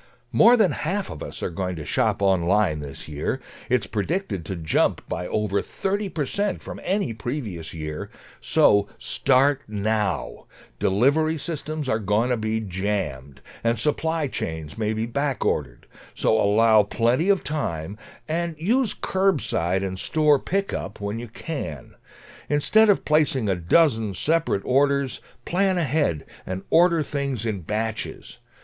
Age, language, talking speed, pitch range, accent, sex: 60-79, English, 140 wpm, 95-150 Hz, American, male